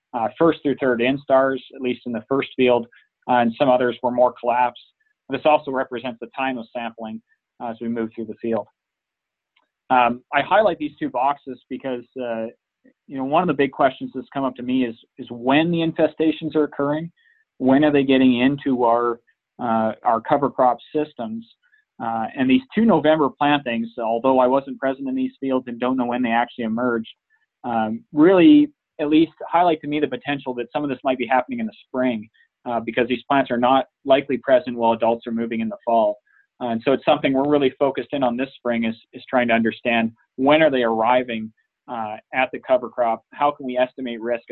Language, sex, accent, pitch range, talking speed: English, male, American, 120-145 Hz, 210 wpm